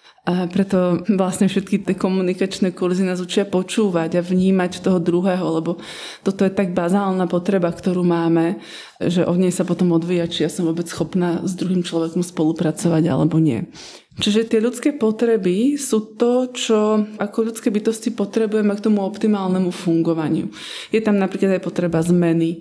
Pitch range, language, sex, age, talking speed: 175-220 Hz, Slovak, female, 20-39, 160 wpm